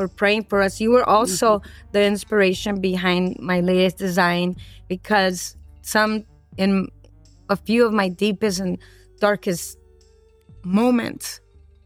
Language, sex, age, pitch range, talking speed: English, female, 20-39, 195-245 Hz, 115 wpm